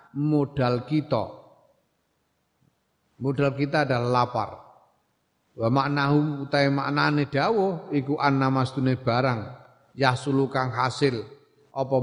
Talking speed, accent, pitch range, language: 85 wpm, native, 115-145 Hz, Indonesian